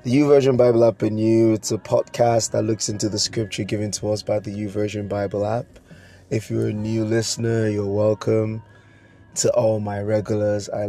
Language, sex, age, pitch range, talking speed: English, male, 20-39, 105-115 Hz, 185 wpm